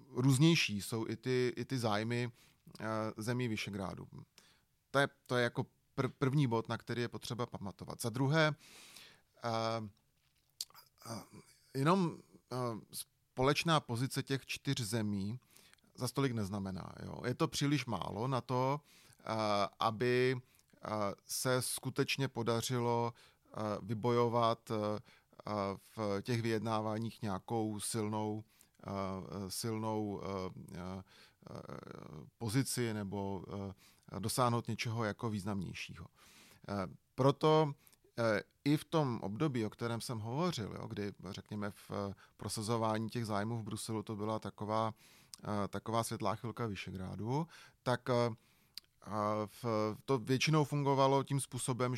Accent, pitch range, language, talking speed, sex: native, 105-130 Hz, Czech, 100 wpm, male